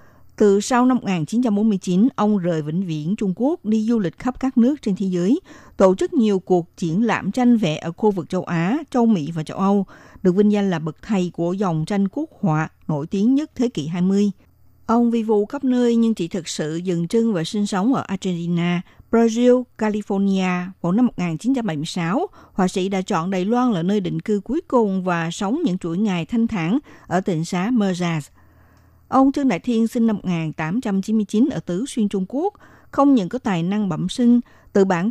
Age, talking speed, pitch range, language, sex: 60-79, 205 wpm, 170-230 Hz, Vietnamese, female